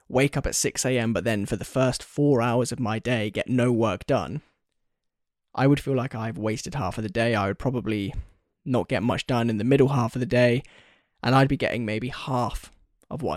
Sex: male